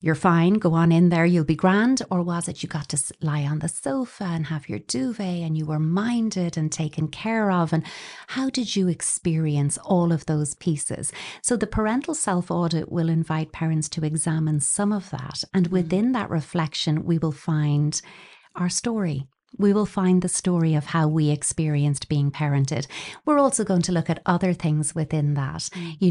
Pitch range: 155-190 Hz